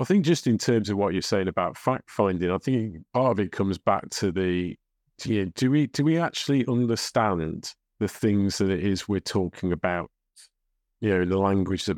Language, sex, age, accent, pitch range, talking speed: English, male, 30-49, British, 100-125 Hz, 215 wpm